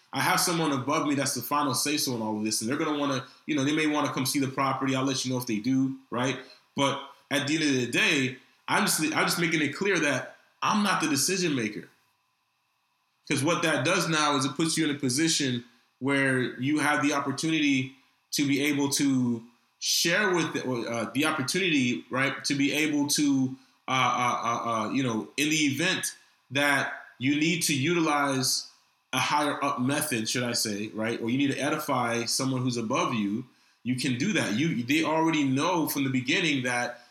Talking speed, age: 210 wpm, 20-39